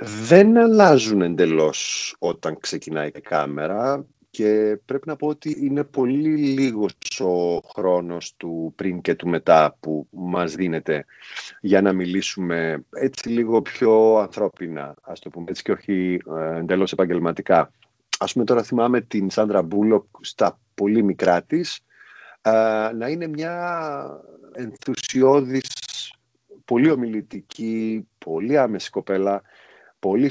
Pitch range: 90-120 Hz